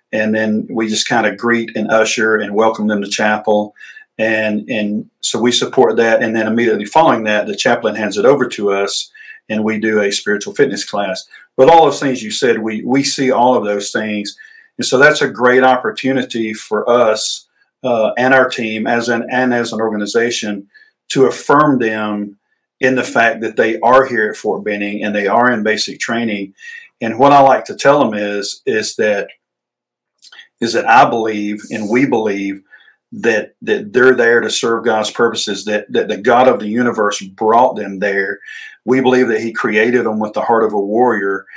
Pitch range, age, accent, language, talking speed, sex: 105-125 Hz, 50-69, American, English, 195 wpm, male